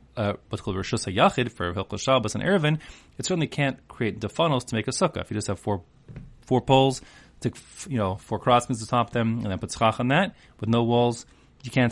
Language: English